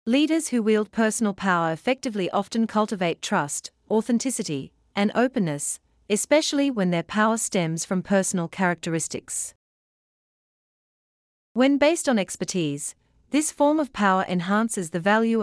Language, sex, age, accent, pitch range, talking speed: English, female, 40-59, Australian, 180-245 Hz, 120 wpm